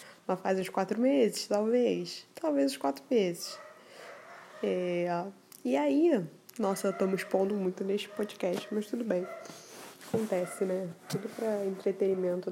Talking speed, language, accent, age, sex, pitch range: 130 wpm, Portuguese, Brazilian, 10-29, female, 190-250 Hz